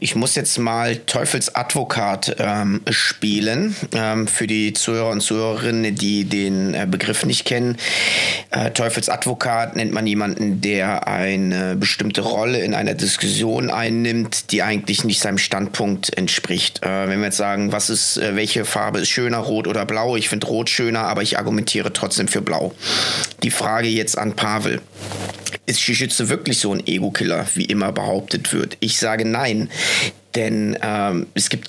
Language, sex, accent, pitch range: German, male, German, 105-120 Hz